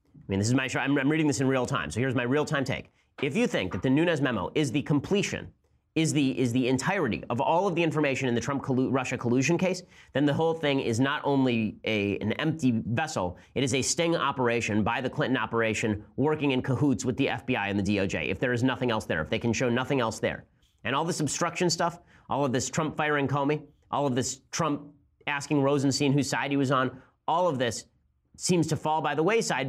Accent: American